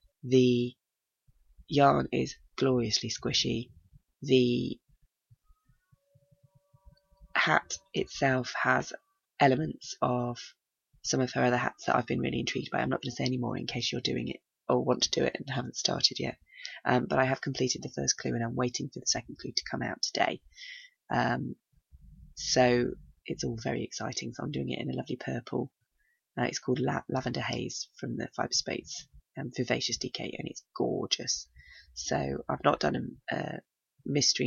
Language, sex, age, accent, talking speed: English, female, 20-39, British, 170 wpm